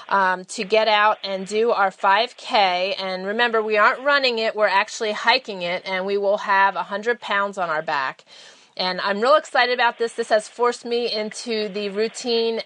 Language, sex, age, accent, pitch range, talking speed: English, female, 30-49, American, 195-230 Hz, 190 wpm